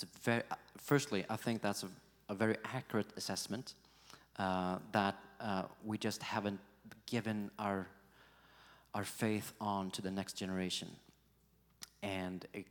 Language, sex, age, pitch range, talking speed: English, male, 30-49, 95-115 Hz, 135 wpm